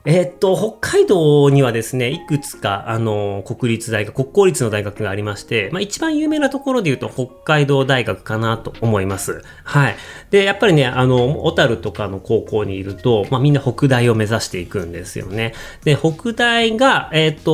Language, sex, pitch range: Japanese, male, 105-155 Hz